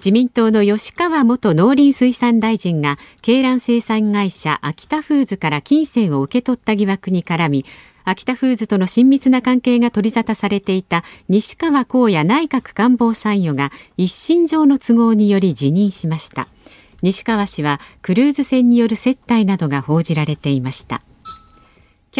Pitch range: 175-255 Hz